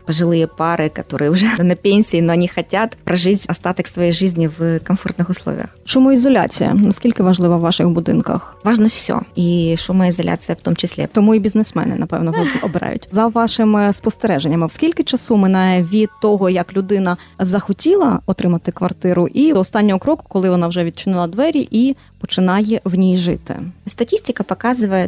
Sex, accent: female, native